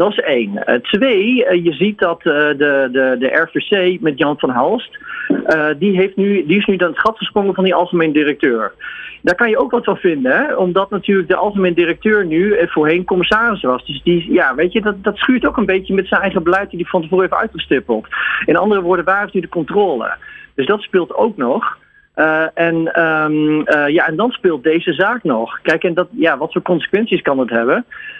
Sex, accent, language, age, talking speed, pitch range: male, Dutch, Dutch, 40-59, 225 wpm, 155-205 Hz